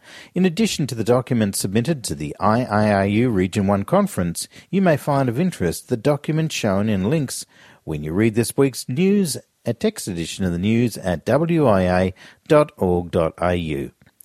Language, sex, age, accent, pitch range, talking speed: English, male, 50-69, Australian, 95-150 Hz, 150 wpm